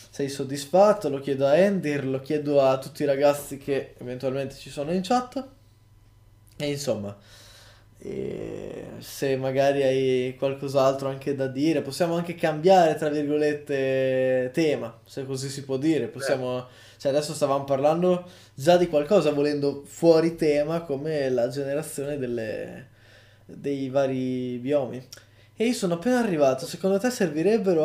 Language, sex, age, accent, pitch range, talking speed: Italian, male, 10-29, native, 115-155 Hz, 140 wpm